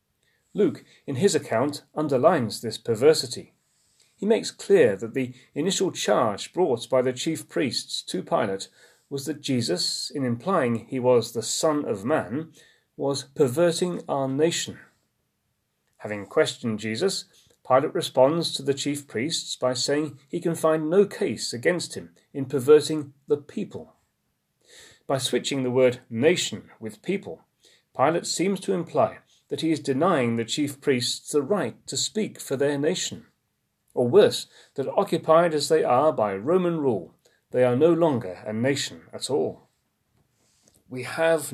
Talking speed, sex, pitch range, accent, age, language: 150 wpm, male, 130-165 Hz, British, 40-59, English